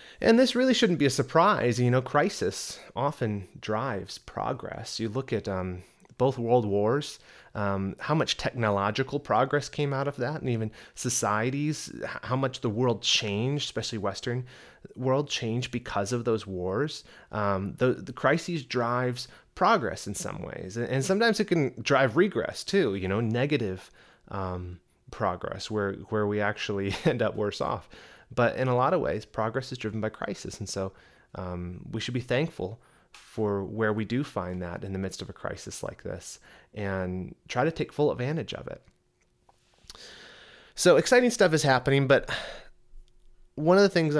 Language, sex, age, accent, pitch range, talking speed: English, male, 30-49, American, 105-140 Hz, 170 wpm